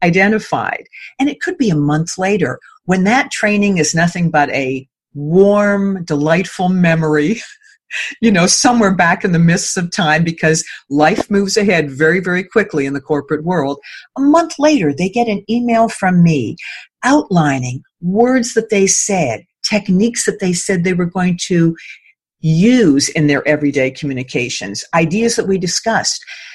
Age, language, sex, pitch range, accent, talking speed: 50-69, English, female, 150-220 Hz, American, 155 wpm